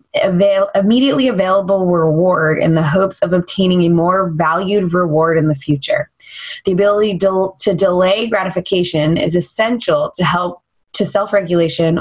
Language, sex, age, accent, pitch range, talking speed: English, female, 20-39, American, 170-210 Hz, 130 wpm